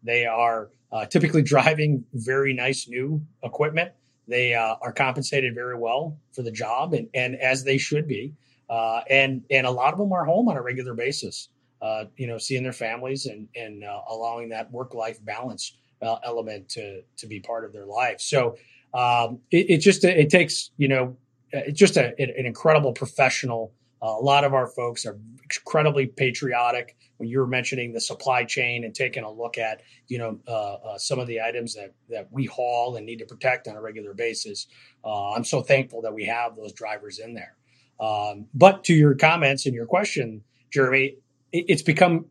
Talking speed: 195 wpm